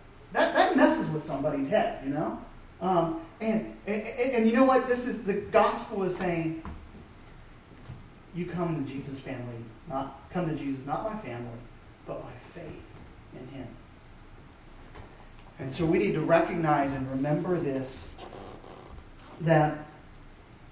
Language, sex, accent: English, male, American